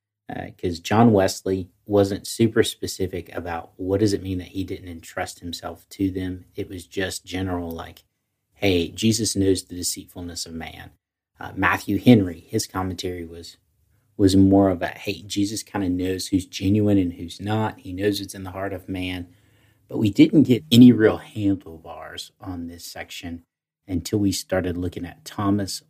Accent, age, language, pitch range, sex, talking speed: American, 40-59, English, 90-100 Hz, male, 175 wpm